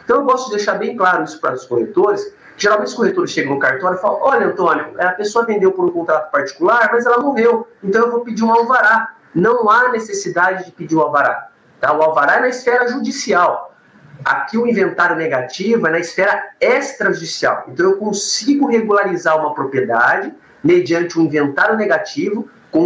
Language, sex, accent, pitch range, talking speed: Portuguese, male, Brazilian, 175-240 Hz, 180 wpm